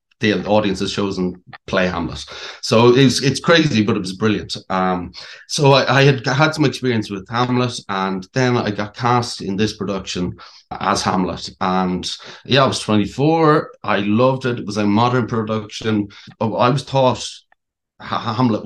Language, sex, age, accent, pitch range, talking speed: English, male, 30-49, Irish, 100-125 Hz, 165 wpm